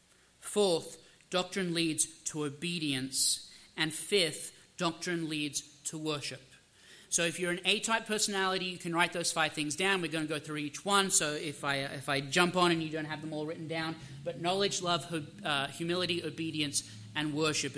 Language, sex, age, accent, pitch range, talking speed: English, male, 30-49, Australian, 155-210 Hz, 185 wpm